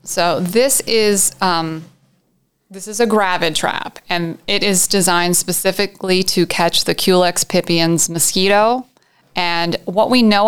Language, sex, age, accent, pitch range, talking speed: English, female, 30-49, American, 165-190 Hz, 135 wpm